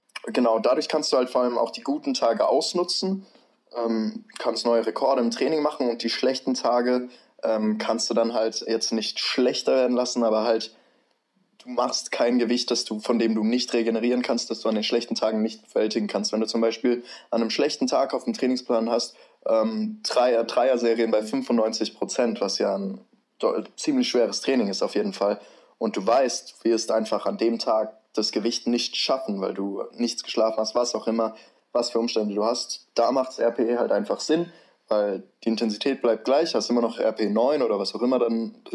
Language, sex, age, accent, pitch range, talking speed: German, male, 20-39, German, 110-130 Hz, 205 wpm